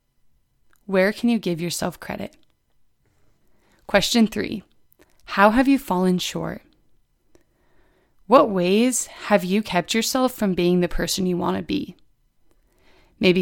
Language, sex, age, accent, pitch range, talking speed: English, female, 20-39, American, 175-210 Hz, 125 wpm